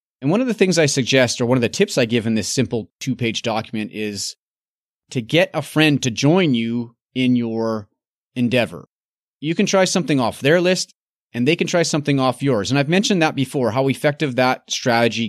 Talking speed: 210 wpm